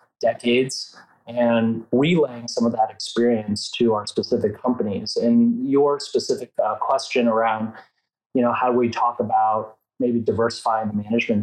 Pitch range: 110-130 Hz